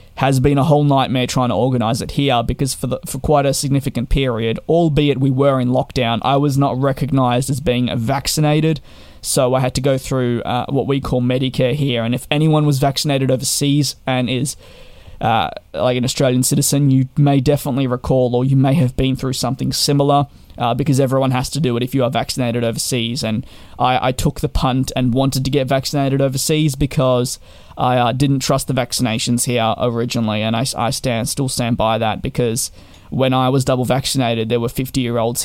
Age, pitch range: 20-39, 120-140 Hz